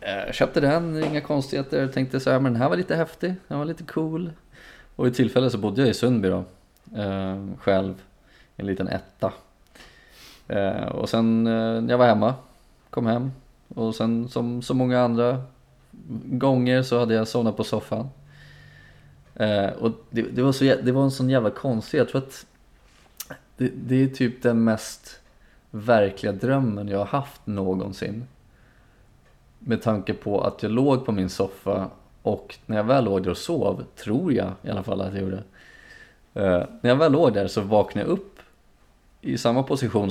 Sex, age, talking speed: male, 20-39, 175 wpm